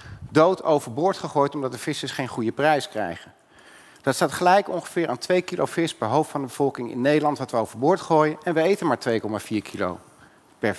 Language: Dutch